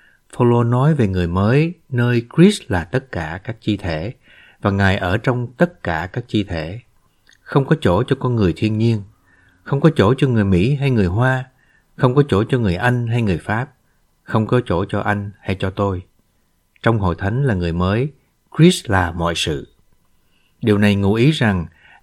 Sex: male